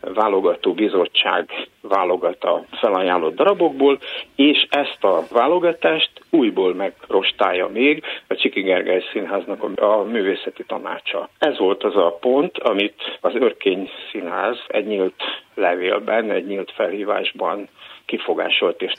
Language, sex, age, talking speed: Hungarian, male, 60-79, 110 wpm